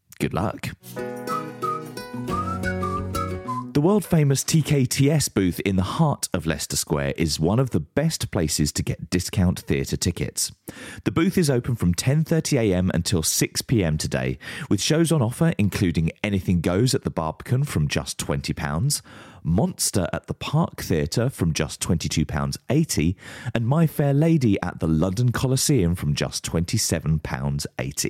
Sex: male